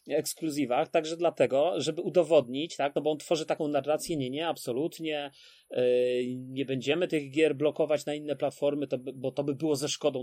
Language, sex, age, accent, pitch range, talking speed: Polish, male, 30-49, native, 145-170 Hz, 170 wpm